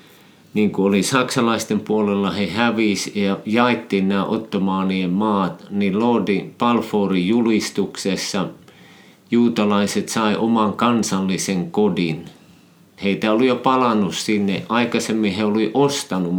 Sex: male